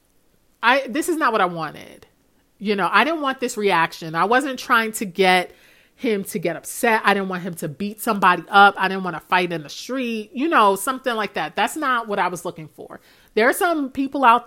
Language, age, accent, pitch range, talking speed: English, 30-49, American, 190-245 Hz, 230 wpm